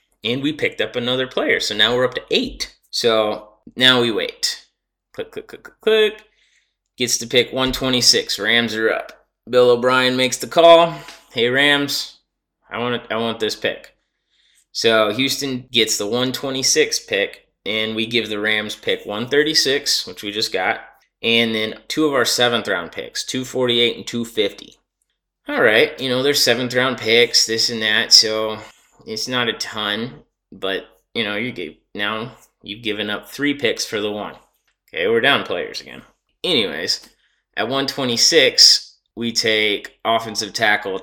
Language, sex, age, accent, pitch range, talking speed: English, male, 20-39, American, 110-145 Hz, 160 wpm